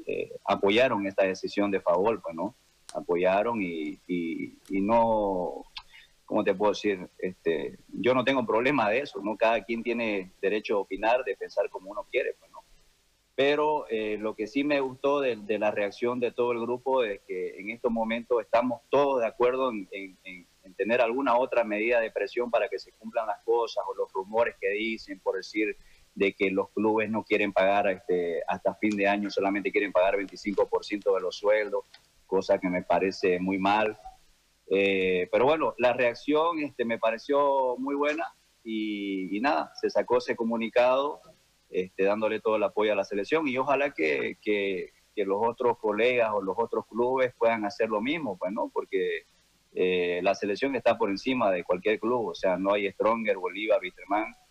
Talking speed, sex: 185 wpm, male